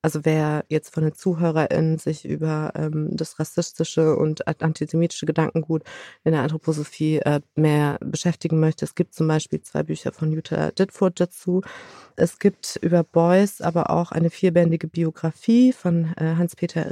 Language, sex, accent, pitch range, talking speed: German, female, German, 160-180 Hz, 155 wpm